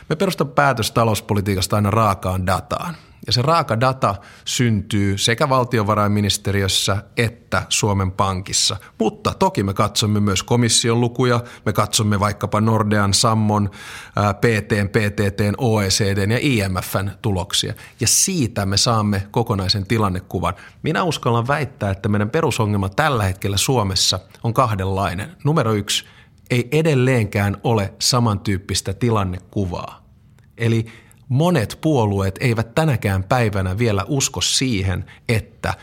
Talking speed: 115 wpm